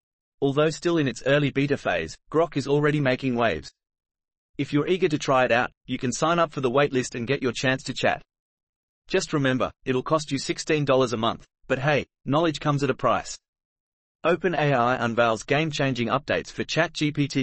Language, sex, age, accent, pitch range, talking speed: English, male, 30-49, Australian, 125-150 Hz, 185 wpm